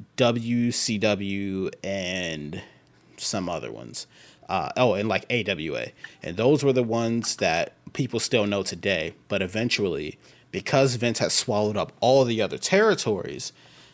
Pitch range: 105-130 Hz